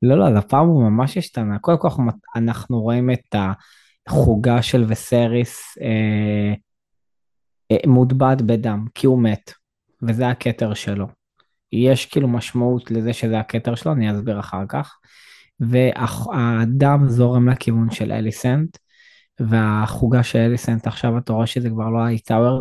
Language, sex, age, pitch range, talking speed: Hebrew, male, 20-39, 110-130 Hz, 130 wpm